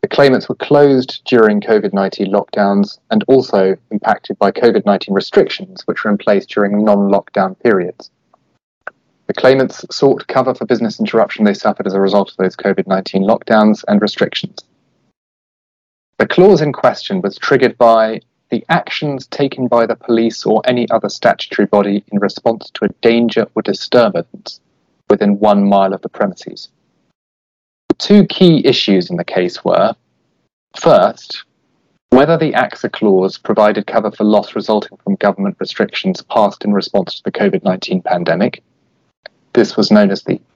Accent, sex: British, male